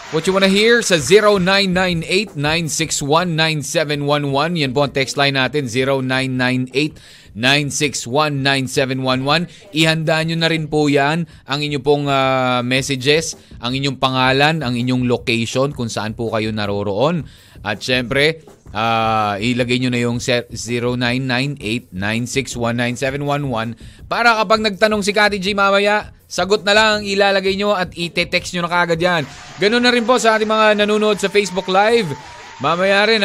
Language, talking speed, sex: Filipino, 135 wpm, male